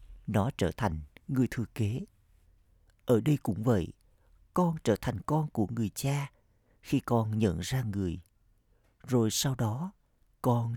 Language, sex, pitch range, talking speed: Vietnamese, male, 80-120 Hz, 145 wpm